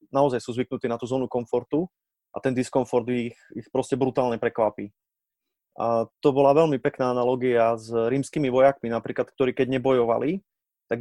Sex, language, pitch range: male, Slovak, 115-135 Hz